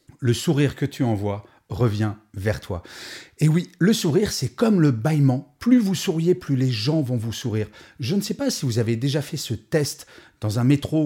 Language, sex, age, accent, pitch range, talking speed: French, male, 40-59, French, 115-170 Hz, 210 wpm